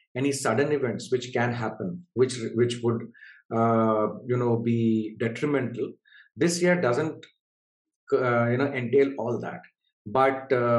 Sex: male